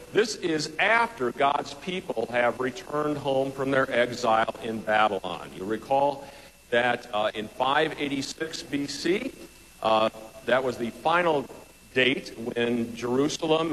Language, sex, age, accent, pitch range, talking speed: English, male, 50-69, American, 110-135 Hz, 120 wpm